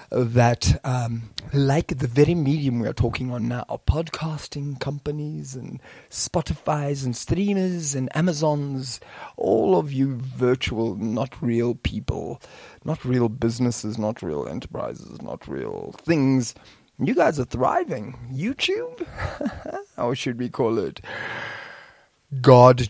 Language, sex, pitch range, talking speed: English, male, 115-145 Hz, 120 wpm